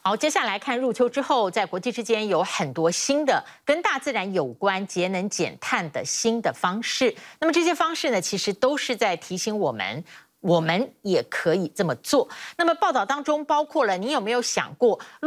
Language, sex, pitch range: Chinese, female, 190-295 Hz